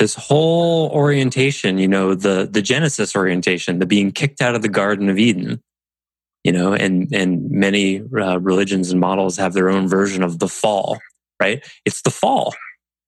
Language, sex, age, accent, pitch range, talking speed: English, male, 20-39, American, 90-140 Hz, 175 wpm